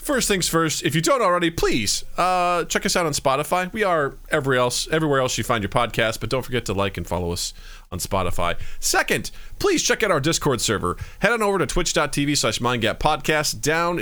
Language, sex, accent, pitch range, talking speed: English, male, American, 115-170 Hz, 210 wpm